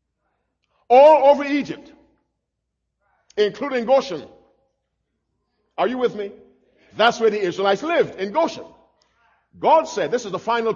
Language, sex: English, male